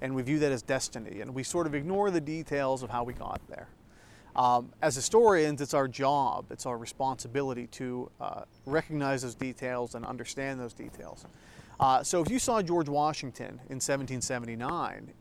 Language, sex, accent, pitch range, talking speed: English, male, American, 120-145 Hz, 180 wpm